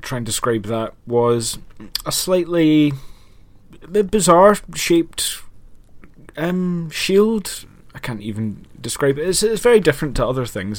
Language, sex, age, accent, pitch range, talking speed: English, male, 20-39, British, 115-135 Hz, 130 wpm